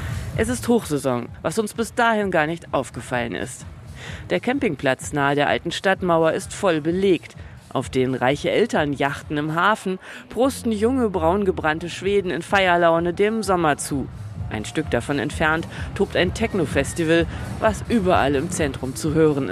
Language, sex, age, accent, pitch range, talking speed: German, female, 40-59, German, 140-185 Hz, 150 wpm